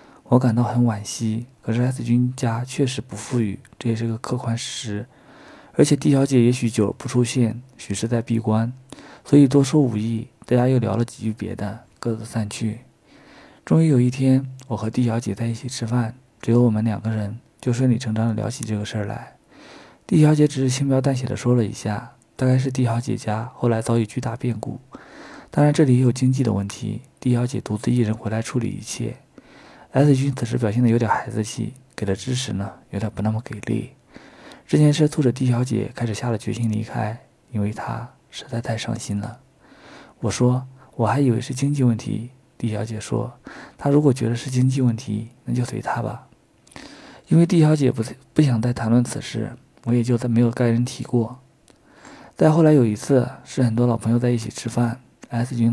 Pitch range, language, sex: 115-130 Hz, Chinese, male